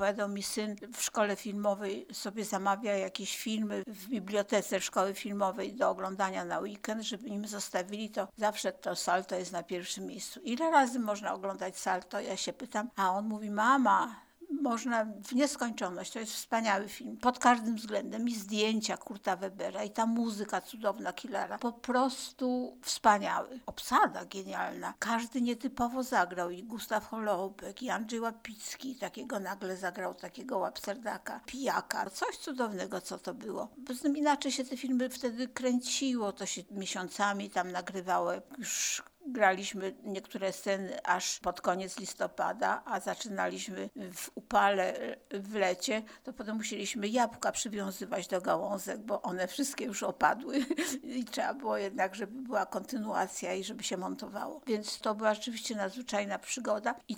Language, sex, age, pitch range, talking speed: Polish, female, 60-79, 195-250 Hz, 150 wpm